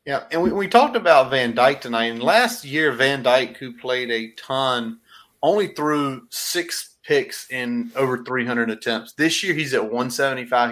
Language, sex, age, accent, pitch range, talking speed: English, male, 30-49, American, 115-135 Hz, 175 wpm